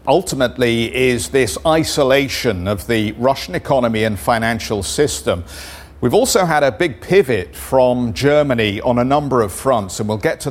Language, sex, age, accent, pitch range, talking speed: English, male, 50-69, British, 110-145 Hz, 160 wpm